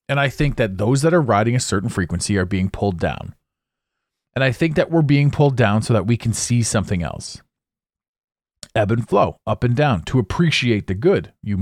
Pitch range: 110-160 Hz